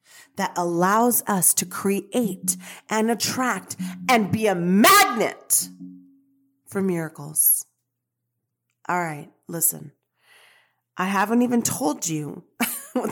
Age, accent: 30-49, American